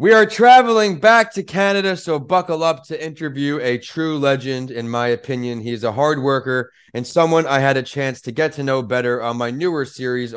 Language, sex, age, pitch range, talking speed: English, male, 20-39, 115-145 Hz, 210 wpm